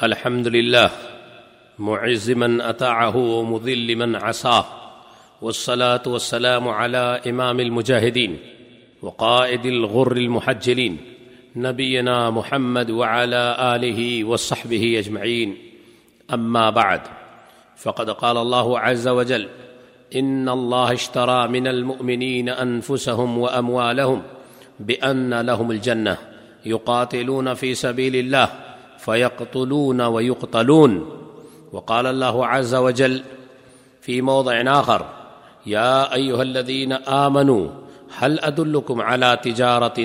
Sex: male